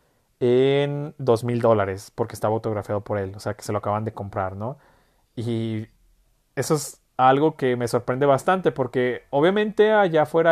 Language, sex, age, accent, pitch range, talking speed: Spanish, male, 30-49, Mexican, 120-155 Hz, 165 wpm